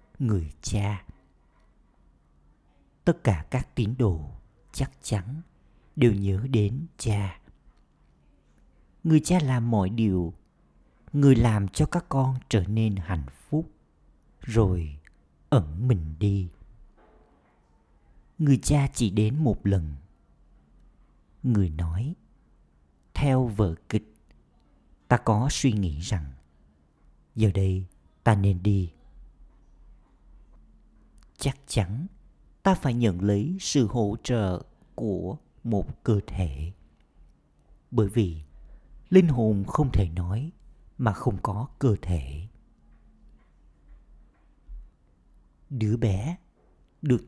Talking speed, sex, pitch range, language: 100 wpm, male, 75-115 Hz, Vietnamese